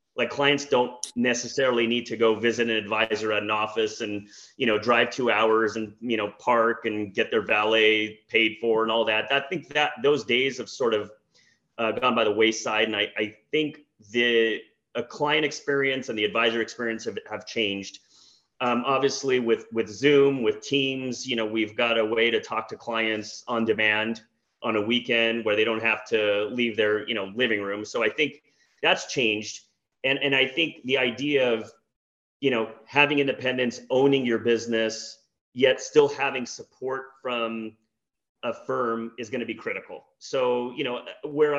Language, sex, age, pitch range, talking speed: English, male, 30-49, 110-130 Hz, 185 wpm